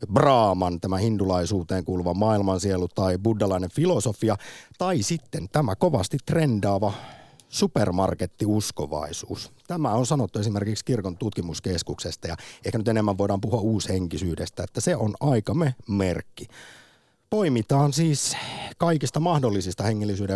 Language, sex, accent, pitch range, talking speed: Finnish, male, native, 95-125 Hz, 110 wpm